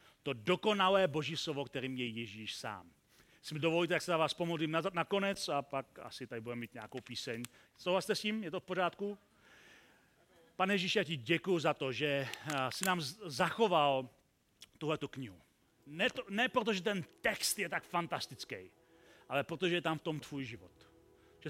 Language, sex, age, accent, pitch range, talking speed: Czech, male, 40-59, native, 135-185 Hz, 175 wpm